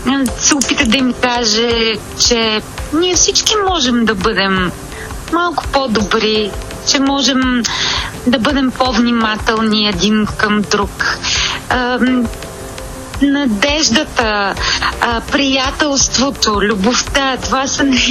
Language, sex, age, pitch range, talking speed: Bulgarian, female, 30-49, 220-275 Hz, 85 wpm